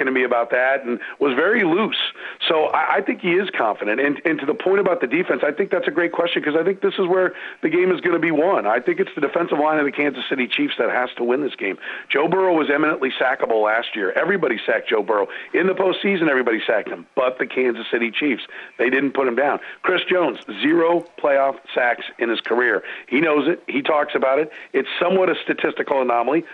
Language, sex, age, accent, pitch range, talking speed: English, male, 40-59, American, 120-170 Hz, 235 wpm